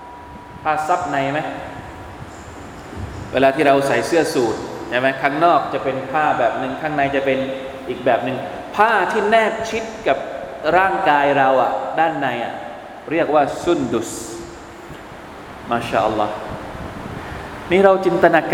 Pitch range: 135-180 Hz